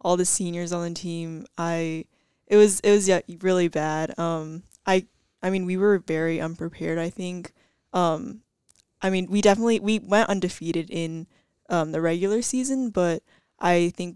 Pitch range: 165-190 Hz